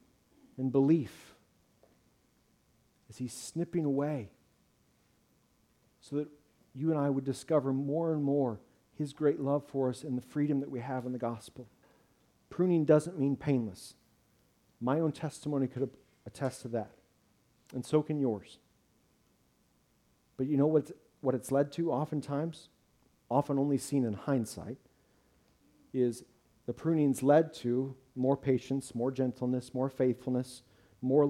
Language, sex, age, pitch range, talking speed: English, male, 40-59, 125-145 Hz, 135 wpm